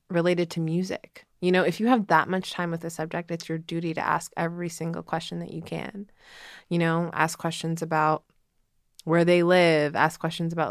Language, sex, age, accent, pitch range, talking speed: English, female, 20-39, American, 160-180 Hz, 200 wpm